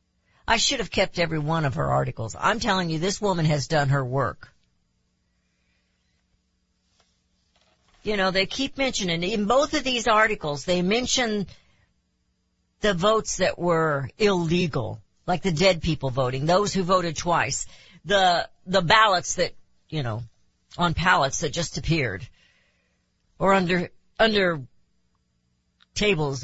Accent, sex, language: American, female, English